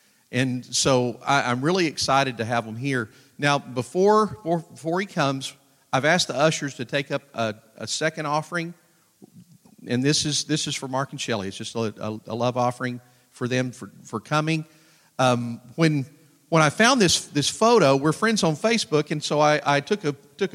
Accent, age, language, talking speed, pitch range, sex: American, 40-59, English, 195 wpm, 130-175 Hz, male